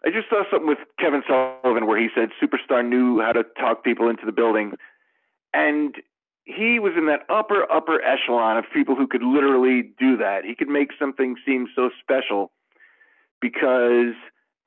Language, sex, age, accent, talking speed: English, male, 40-59, American, 170 wpm